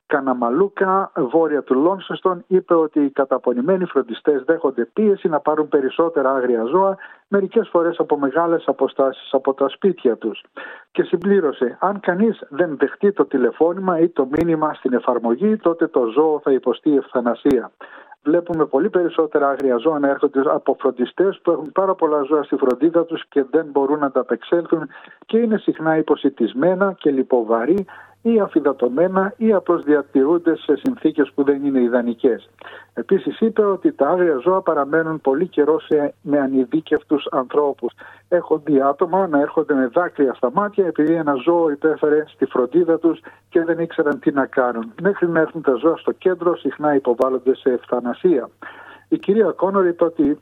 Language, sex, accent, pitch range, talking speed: Greek, male, native, 140-180 Hz, 160 wpm